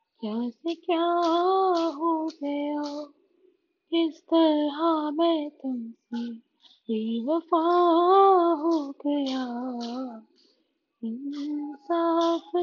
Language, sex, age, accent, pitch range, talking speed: Hindi, female, 20-39, native, 250-330 Hz, 55 wpm